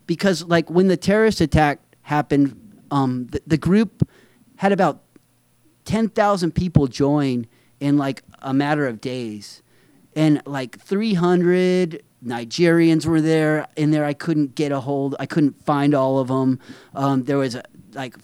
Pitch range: 145-185 Hz